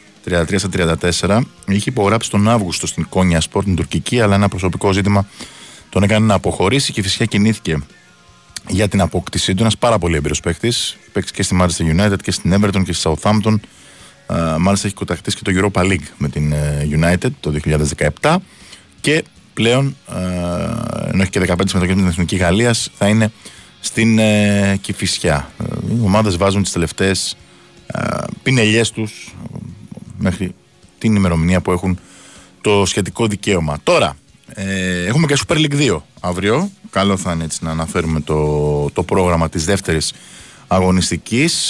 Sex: male